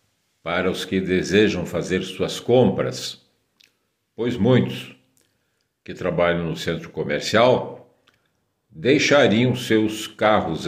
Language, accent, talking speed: Portuguese, Brazilian, 95 wpm